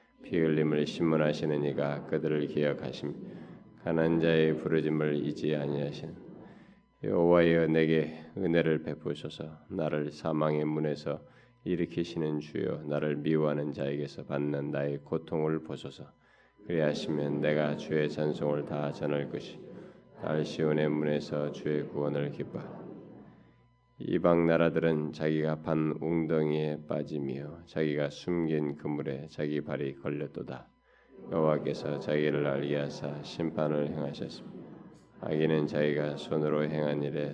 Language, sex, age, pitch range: Korean, male, 20-39, 75-80 Hz